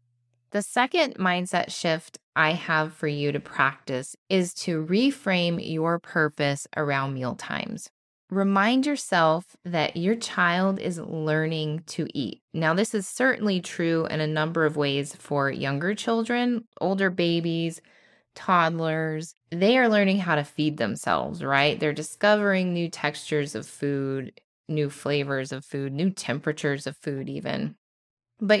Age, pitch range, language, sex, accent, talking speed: 20-39, 150-195 Hz, English, female, American, 140 wpm